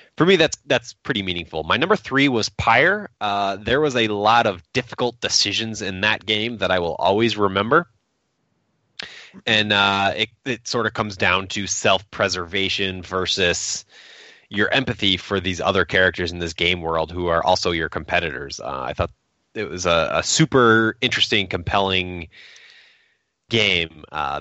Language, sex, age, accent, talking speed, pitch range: English, male, 20-39, American, 160 wpm, 90-115 Hz